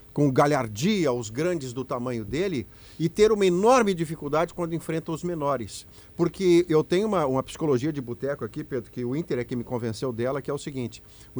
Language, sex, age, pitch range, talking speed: Portuguese, male, 50-69, 140-200 Hz, 205 wpm